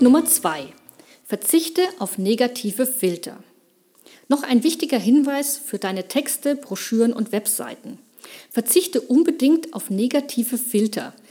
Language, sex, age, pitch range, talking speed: German, female, 50-69, 215-285 Hz, 110 wpm